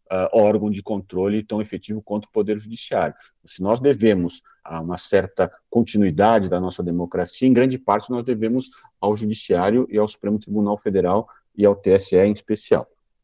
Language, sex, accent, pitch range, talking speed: Portuguese, male, Brazilian, 90-120 Hz, 170 wpm